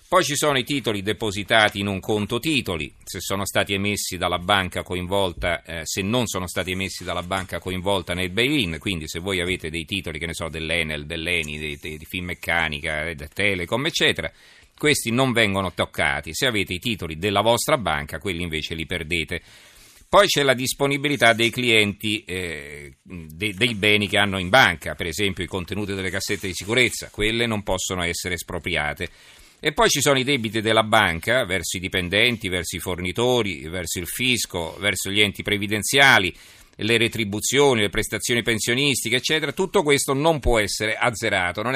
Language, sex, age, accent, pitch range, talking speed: Italian, male, 40-59, native, 90-115 Hz, 175 wpm